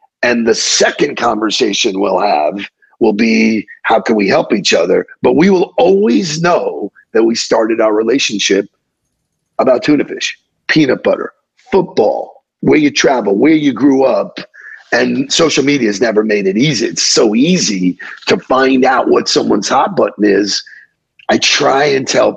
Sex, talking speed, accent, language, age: male, 160 wpm, American, English, 50-69